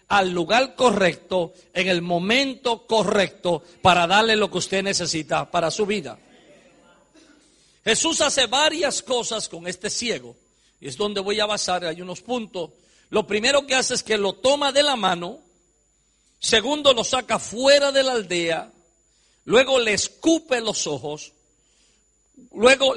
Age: 50-69